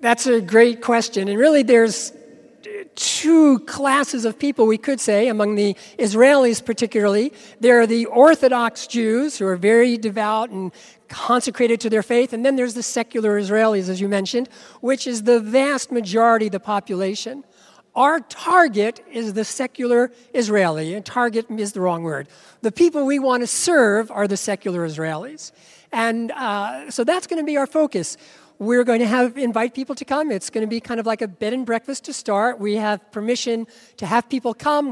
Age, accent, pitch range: 50-69, American, 210-265 Hz